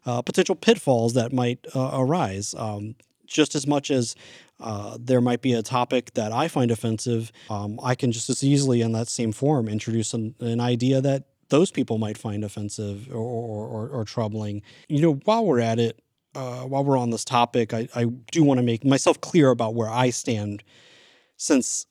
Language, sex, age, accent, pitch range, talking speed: English, male, 30-49, American, 115-135 Hz, 195 wpm